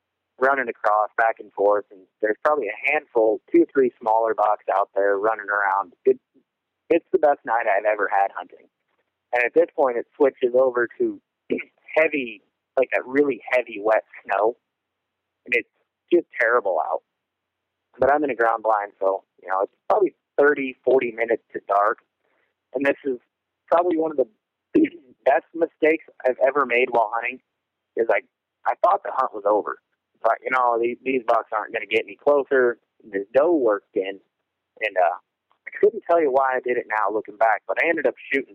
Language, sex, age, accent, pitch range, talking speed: English, male, 30-49, American, 115-170 Hz, 190 wpm